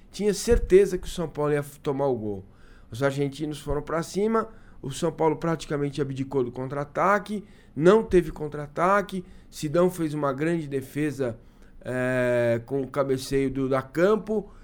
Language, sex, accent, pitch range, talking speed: Portuguese, male, Brazilian, 140-195 Hz, 150 wpm